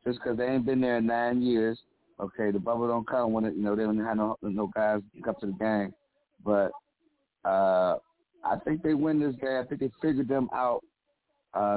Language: English